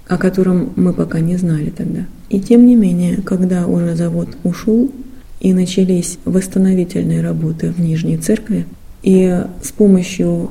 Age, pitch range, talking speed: 30-49, 170-205 Hz, 145 wpm